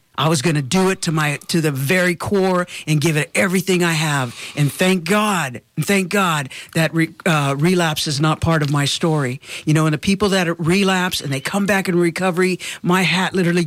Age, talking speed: 50-69, 215 wpm